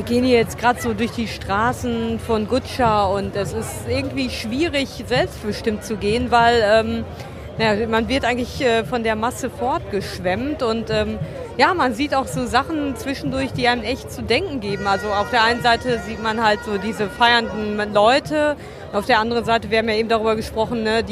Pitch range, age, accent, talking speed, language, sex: 210-245 Hz, 40-59, German, 190 wpm, German, female